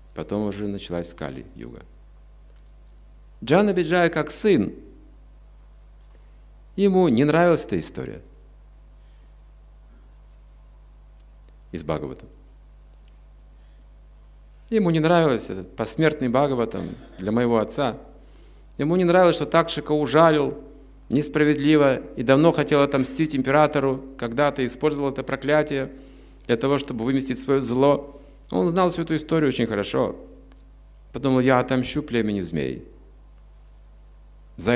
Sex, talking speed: male, 105 wpm